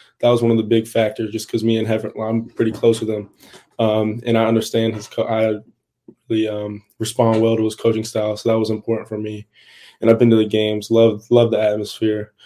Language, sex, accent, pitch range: English, male, American, 110-115 Hz